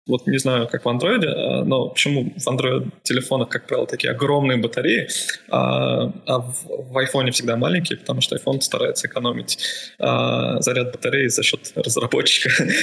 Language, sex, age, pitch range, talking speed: Russian, male, 20-39, 120-140 Hz, 145 wpm